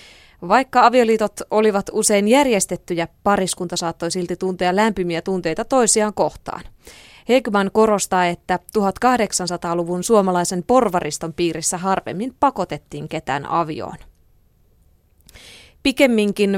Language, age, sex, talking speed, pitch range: Finnish, 20-39, female, 90 wpm, 175-225 Hz